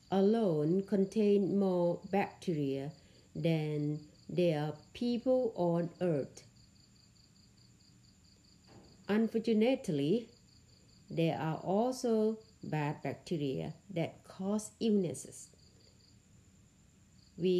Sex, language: female, Thai